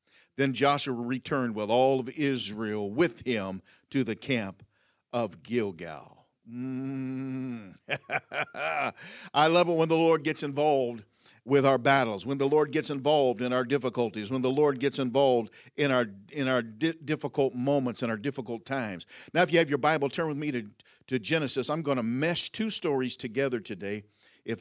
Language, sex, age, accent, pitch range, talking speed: English, male, 50-69, American, 115-145 Hz, 170 wpm